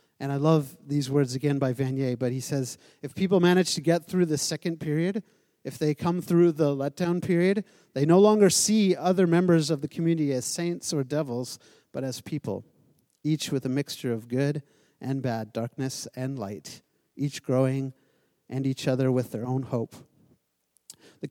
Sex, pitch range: male, 125-155 Hz